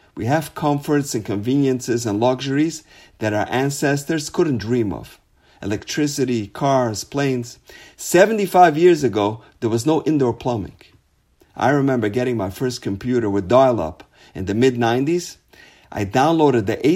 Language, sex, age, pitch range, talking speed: English, male, 50-69, 110-150 Hz, 135 wpm